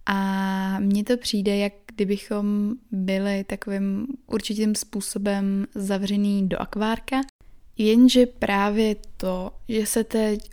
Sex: female